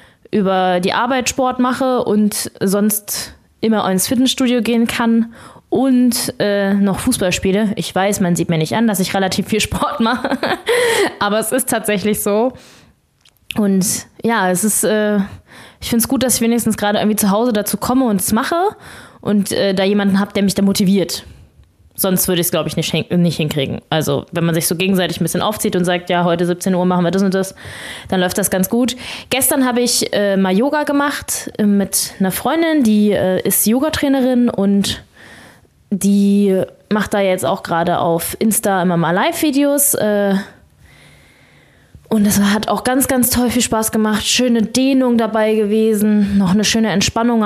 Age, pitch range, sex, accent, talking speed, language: 20-39, 190-235 Hz, female, German, 180 wpm, German